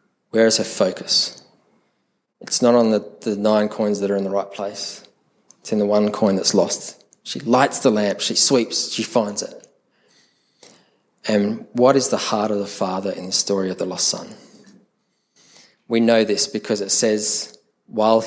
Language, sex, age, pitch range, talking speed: English, male, 20-39, 100-115 Hz, 180 wpm